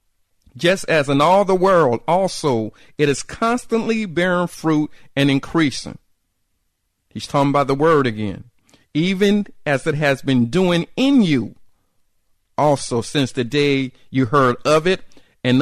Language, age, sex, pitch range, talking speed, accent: English, 50-69, male, 110-155 Hz, 140 wpm, American